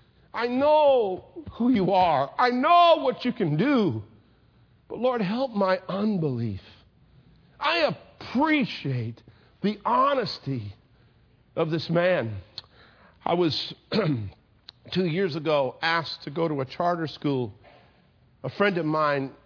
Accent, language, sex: American, English, male